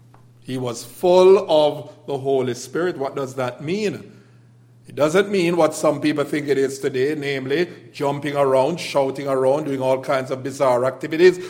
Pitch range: 130-165 Hz